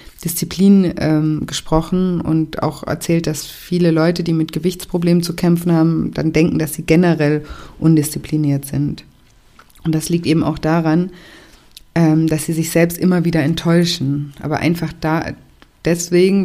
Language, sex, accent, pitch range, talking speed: German, female, German, 160-175 Hz, 145 wpm